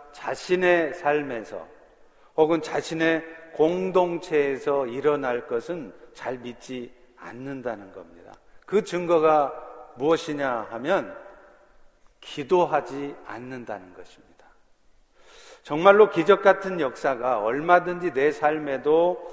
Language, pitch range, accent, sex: Korean, 145-190 Hz, native, male